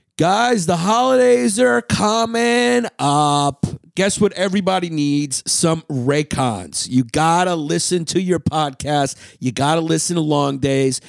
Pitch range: 140-220 Hz